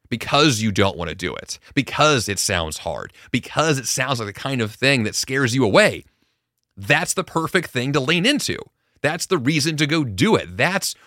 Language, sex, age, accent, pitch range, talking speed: English, male, 30-49, American, 105-145 Hz, 205 wpm